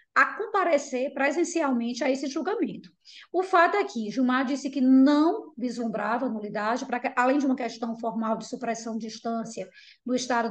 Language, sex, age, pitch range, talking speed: Portuguese, female, 20-39, 230-310 Hz, 170 wpm